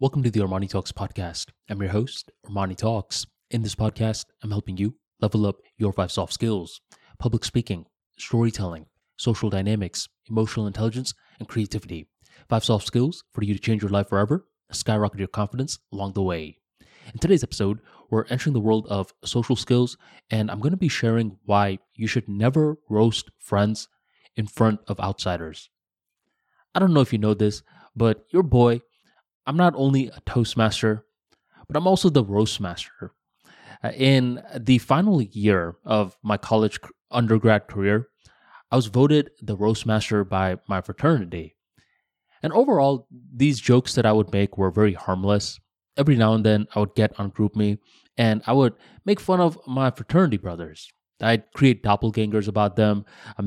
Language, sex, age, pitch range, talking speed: English, male, 20-39, 100-125 Hz, 165 wpm